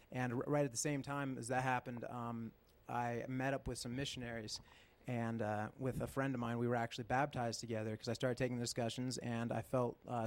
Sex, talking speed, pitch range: male, 230 wpm, 115-130 Hz